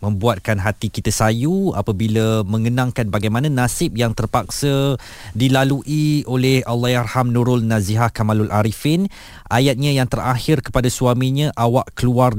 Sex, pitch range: male, 105-125 Hz